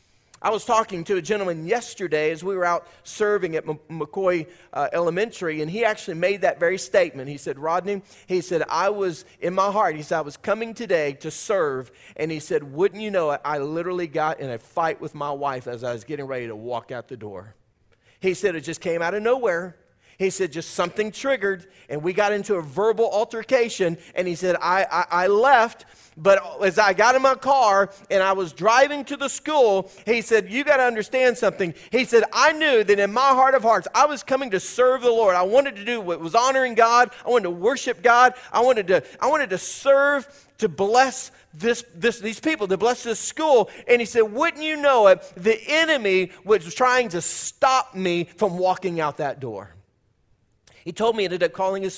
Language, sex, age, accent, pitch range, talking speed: English, male, 30-49, American, 165-235 Hz, 215 wpm